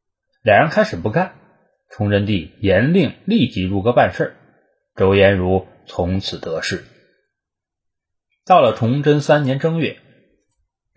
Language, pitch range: Chinese, 95-135 Hz